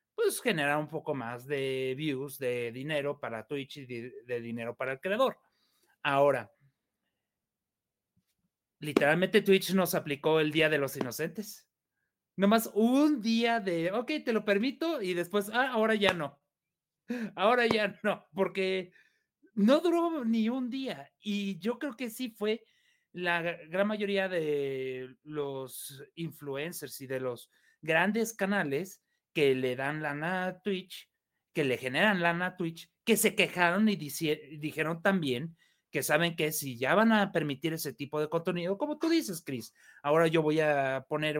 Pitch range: 145-205 Hz